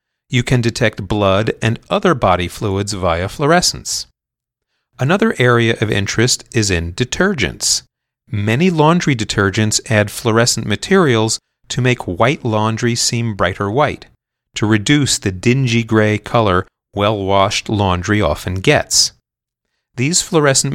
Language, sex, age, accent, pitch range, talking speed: English, male, 40-59, American, 100-125 Hz, 120 wpm